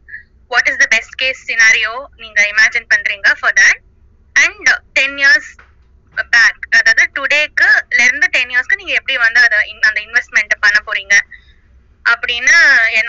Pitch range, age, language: 215-350 Hz, 20-39, Tamil